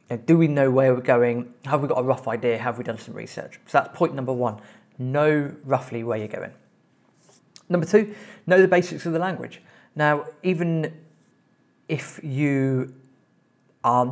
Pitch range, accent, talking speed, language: 130-165 Hz, British, 170 wpm, English